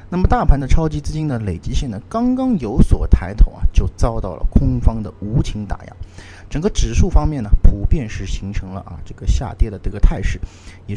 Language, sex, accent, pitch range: Chinese, male, native, 90-120 Hz